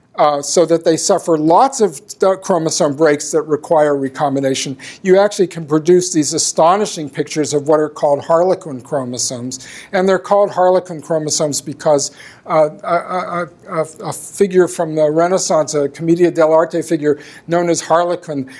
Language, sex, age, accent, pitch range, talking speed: English, male, 50-69, American, 145-185 Hz, 155 wpm